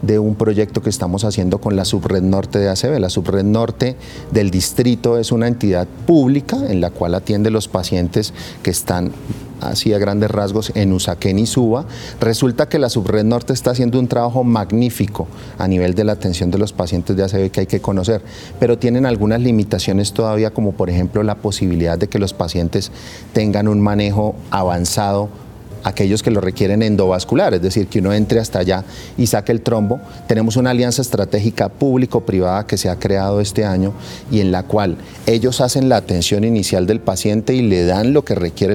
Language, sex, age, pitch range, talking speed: Spanish, male, 30-49, 95-120 Hz, 190 wpm